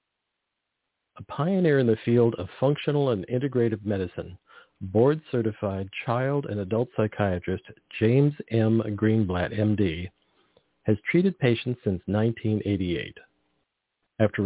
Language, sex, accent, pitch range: English, male, American, 95-115 Hz